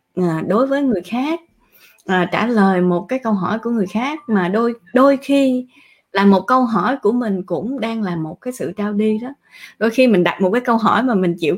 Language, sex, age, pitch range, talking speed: Vietnamese, female, 20-39, 185-255 Hz, 235 wpm